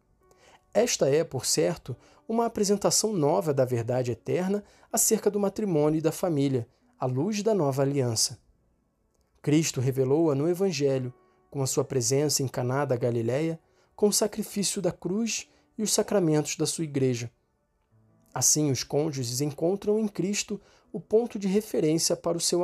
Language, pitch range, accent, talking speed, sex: Portuguese, 125-180 Hz, Brazilian, 150 wpm, male